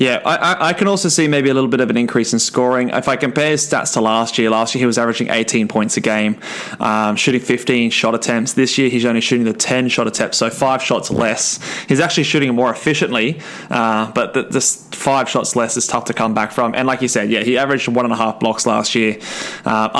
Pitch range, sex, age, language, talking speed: 115-145 Hz, male, 20-39, English, 240 wpm